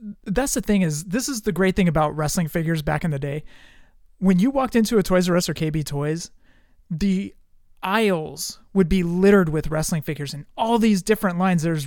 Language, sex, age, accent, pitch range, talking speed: English, male, 30-49, American, 155-215 Hz, 205 wpm